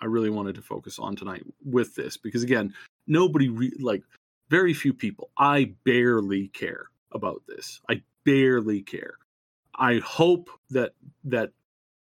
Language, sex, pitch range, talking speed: English, male, 110-130 Hz, 140 wpm